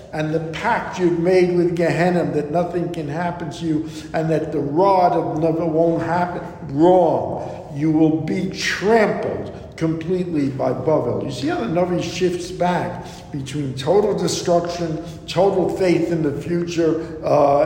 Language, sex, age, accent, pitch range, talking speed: English, male, 60-79, American, 155-185 Hz, 155 wpm